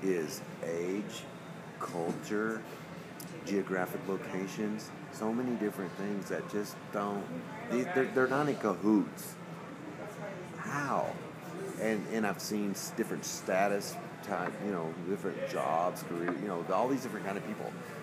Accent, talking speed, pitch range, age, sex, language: American, 125 wpm, 100-120 Hz, 40-59, male, English